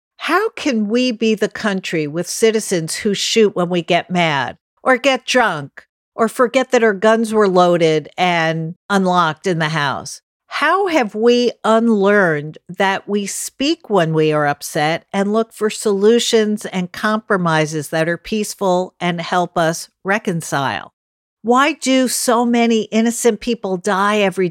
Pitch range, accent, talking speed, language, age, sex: 165-220 Hz, American, 150 wpm, English, 50-69, female